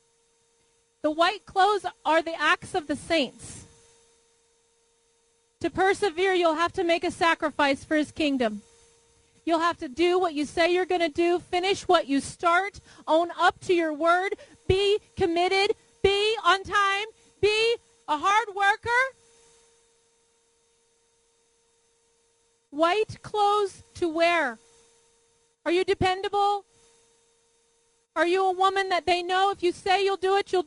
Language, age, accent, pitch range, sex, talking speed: English, 40-59, American, 340-465 Hz, female, 135 wpm